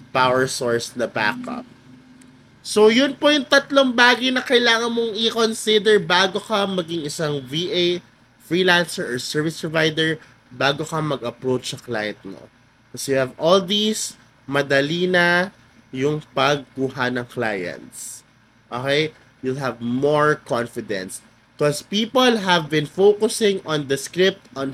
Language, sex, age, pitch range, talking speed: Filipino, male, 20-39, 130-185 Hz, 125 wpm